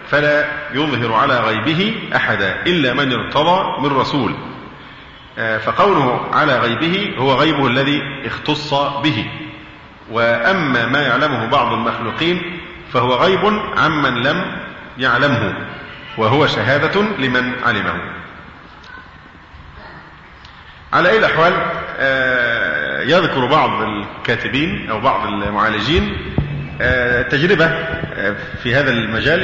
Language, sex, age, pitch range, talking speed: Arabic, male, 40-59, 130-160 Hz, 95 wpm